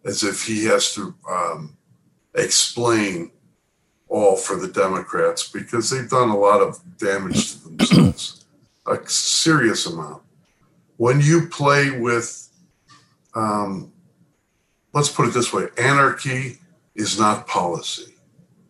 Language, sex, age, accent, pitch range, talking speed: English, male, 60-79, American, 105-140 Hz, 120 wpm